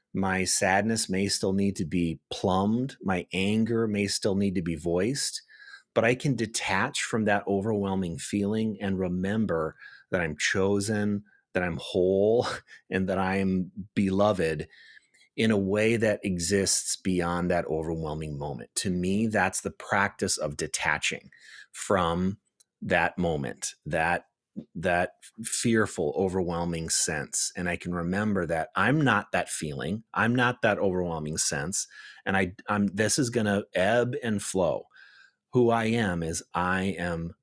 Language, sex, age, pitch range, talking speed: English, male, 30-49, 90-110 Hz, 145 wpm